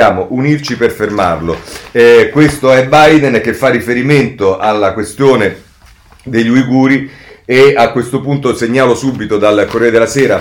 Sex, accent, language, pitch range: male, native, Italian, 90-135 Hz